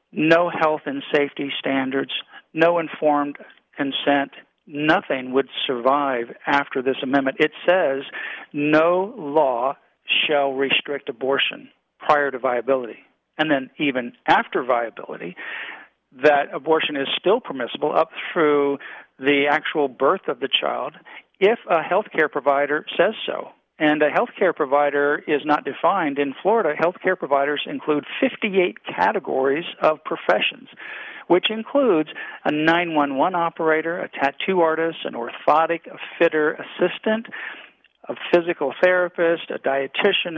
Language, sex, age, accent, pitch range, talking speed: English, male, 50-69, American, 140-170 Hz, 125 wpm